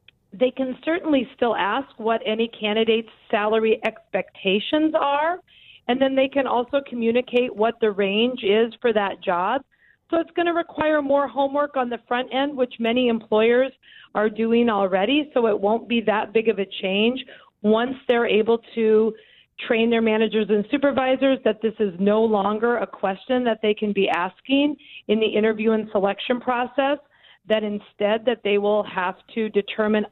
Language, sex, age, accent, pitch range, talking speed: English, female, 40-59, American, 210-245 Hz, 165 wpm